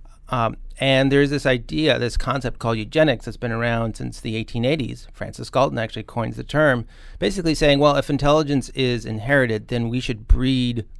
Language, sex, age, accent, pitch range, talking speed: English, male, 30-49, American, 110-125 Hz, 180 wpm